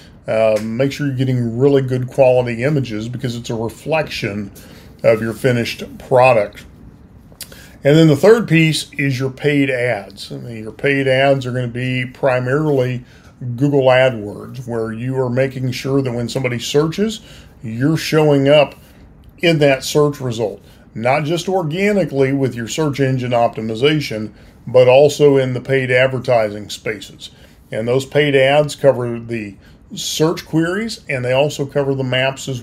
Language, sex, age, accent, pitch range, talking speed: English, male, 40-59, American, 120-145 Hz, 150 wpm